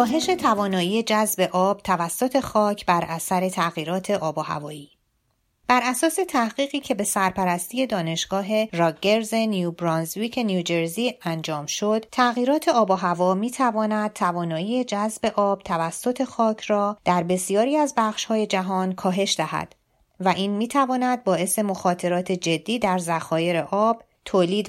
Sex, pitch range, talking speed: female, 175-225 Hz, 130 wpm